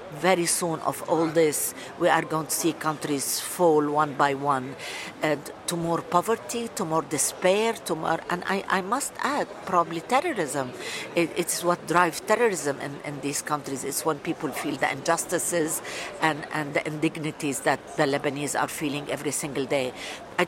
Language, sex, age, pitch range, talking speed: English, female, 50-69, 155-190 Hz, 175 wpm